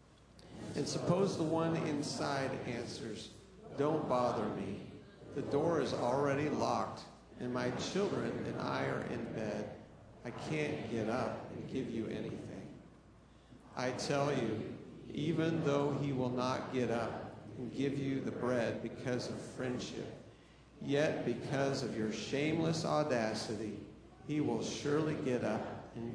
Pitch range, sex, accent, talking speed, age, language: 110-140 Hz, male, American, 140 wpm, 50-69, English